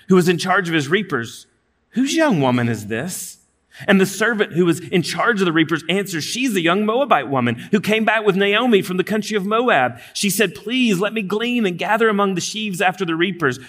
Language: English